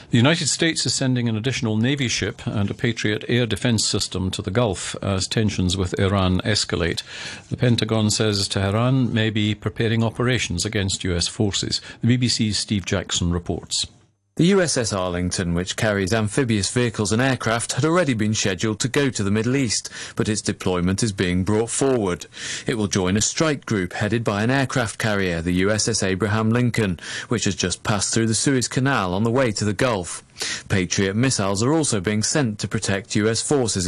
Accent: British